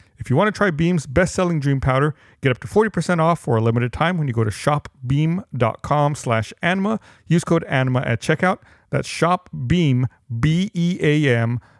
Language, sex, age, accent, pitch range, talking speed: English, male, 40-59, American, 115-155 Hz, 165 wpm